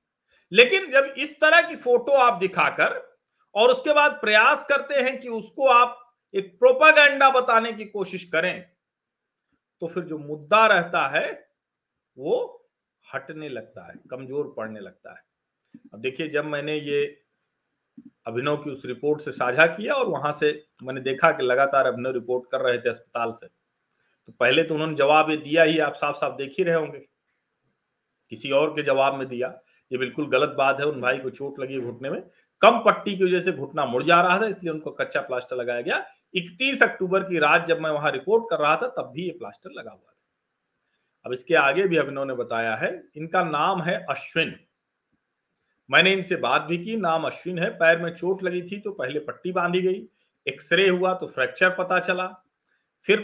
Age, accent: 40-59, native